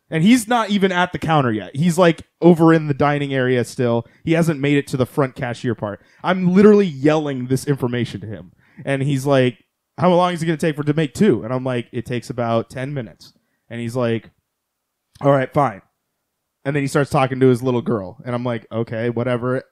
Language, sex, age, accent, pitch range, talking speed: English, male, 20-39, American, 120-155 Hz, 225 wpm